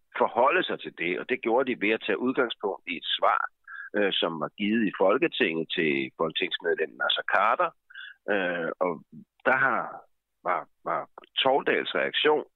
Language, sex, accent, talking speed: Danish, male, native, 155 wpm